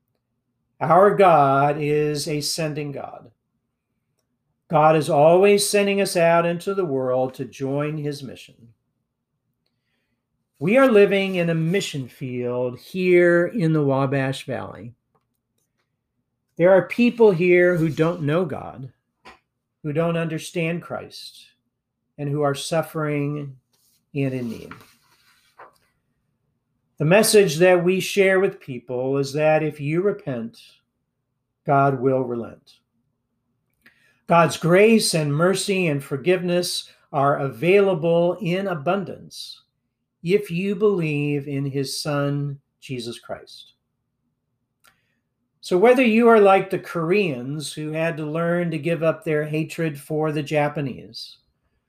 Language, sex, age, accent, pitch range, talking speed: English, male, 50-69, American, 130-175 Hz, 120 wpm